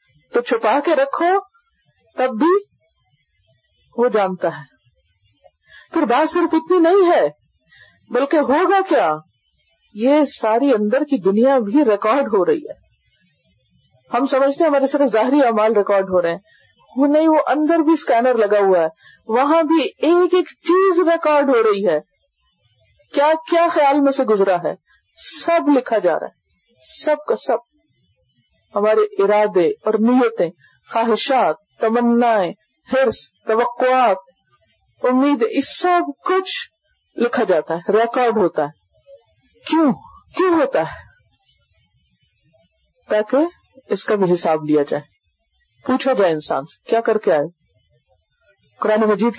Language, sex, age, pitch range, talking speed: Urdu, female, 50-69, 200-300 Hz, 130 wpm